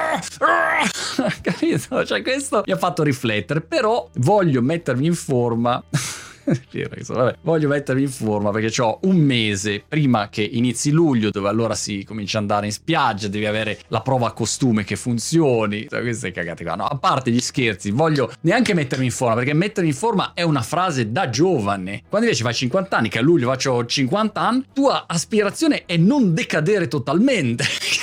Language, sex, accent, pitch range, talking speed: Italian, male, native, 120-190 Hz, 170 wpm